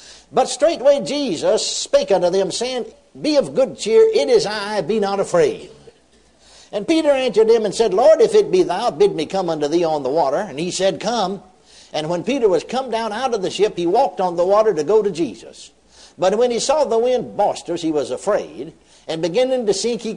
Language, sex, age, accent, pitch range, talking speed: English, male, 60-79, American, 195-310 Hz, 220 wpm